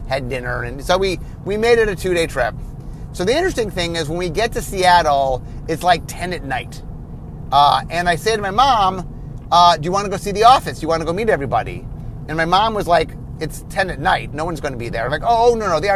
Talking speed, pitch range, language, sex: 265 wpm, 145-195 Hz, English, male